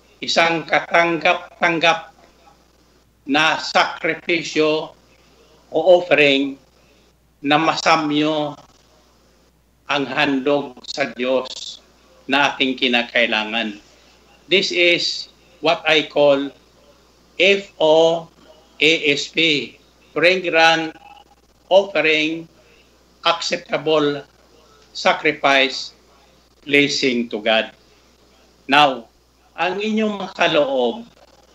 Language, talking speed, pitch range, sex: Filipino, 65 wpm, 135-165 Hz, male